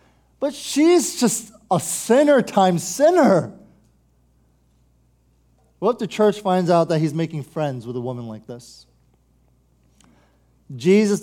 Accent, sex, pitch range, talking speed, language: American, male, 165-210 Hz, 125 wpm, English